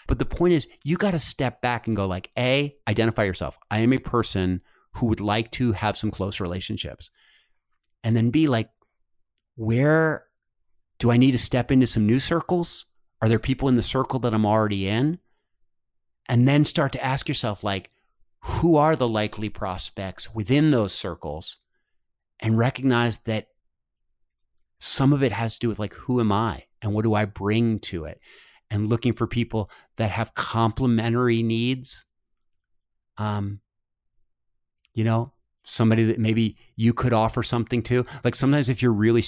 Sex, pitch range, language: male, 110-125 Hz, English